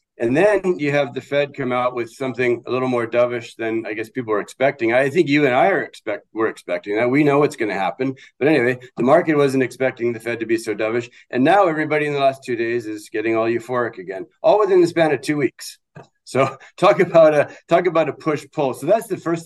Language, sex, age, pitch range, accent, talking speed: English, male, 50-69, 125-190 Hz, American, 250 wpm